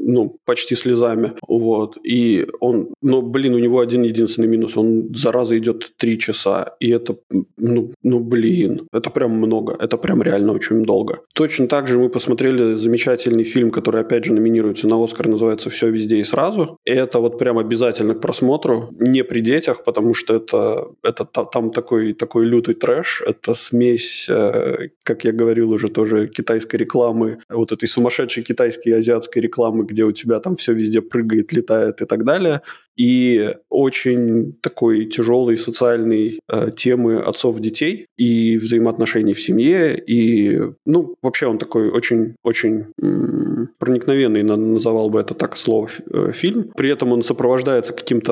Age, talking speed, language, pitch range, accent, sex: 20-39, 160 wpm, Russian, 115-125 Hz, native, male